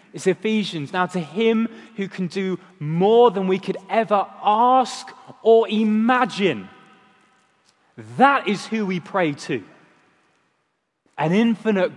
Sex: male